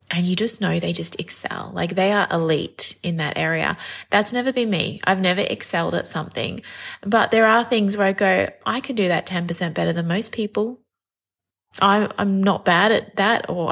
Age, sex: 20-39, female